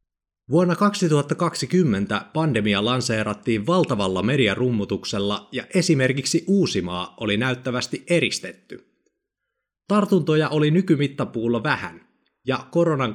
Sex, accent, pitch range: male, Finnish, 115-165 Hz